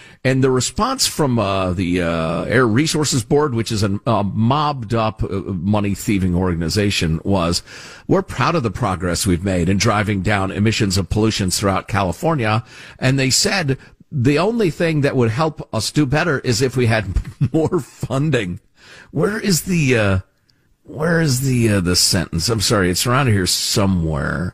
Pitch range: 105-165 Hz